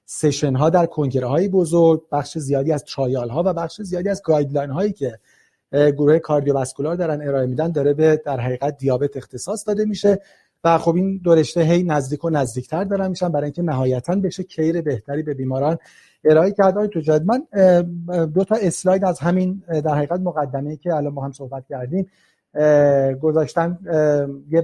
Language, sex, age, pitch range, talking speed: Persian, male, 30-49, 145-175 Hz, 170 wpm